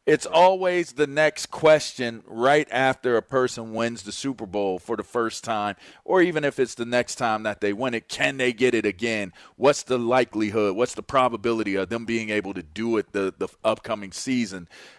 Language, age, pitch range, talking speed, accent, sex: English, 40-59, 115-160 Hz, 200 wpm, American, male